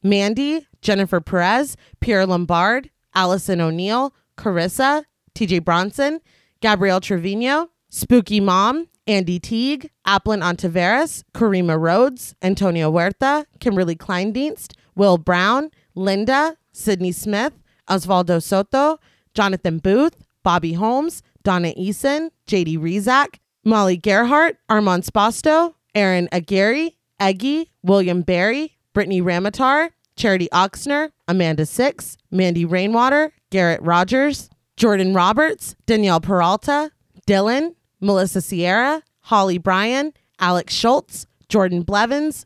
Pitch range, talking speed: 185-270 Hz, 100 wpm